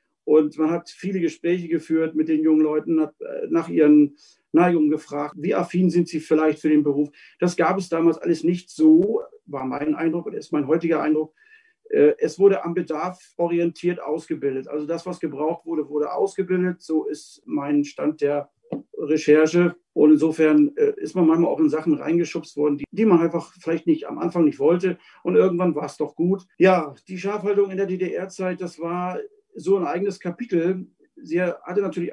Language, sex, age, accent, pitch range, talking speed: German, male, 50-69, German, 155-195 Hz, 180 wpm